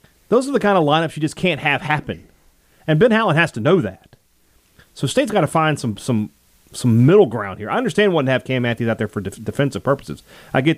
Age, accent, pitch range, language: 30-49, American, 110-165 Hz, English